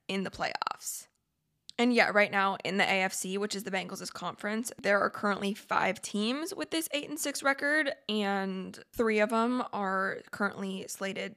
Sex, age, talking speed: female, 20-39, 175 wpm